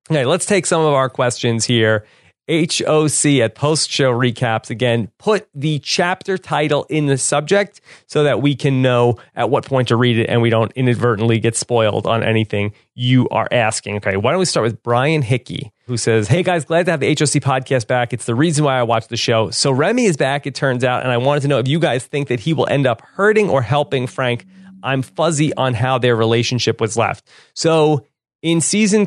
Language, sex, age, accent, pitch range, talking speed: English, male, 30-49, American, 120-150 Hz, 220 wpm